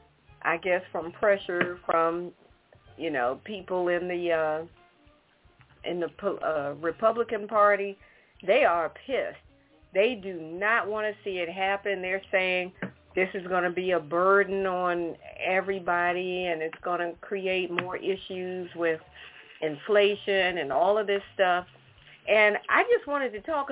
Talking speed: 145 wpm